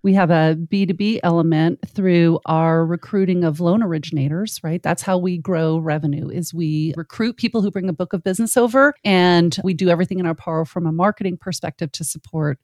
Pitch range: 160-190 Hz